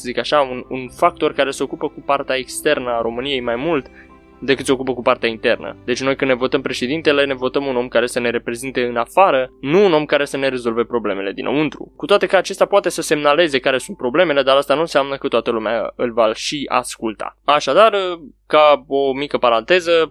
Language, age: Romanian, 20-39